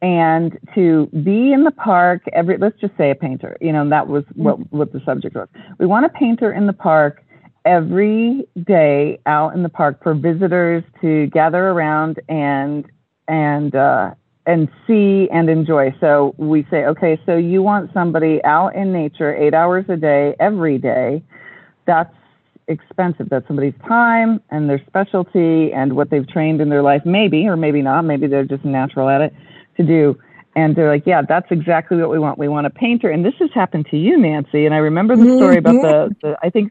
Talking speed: 195 wpm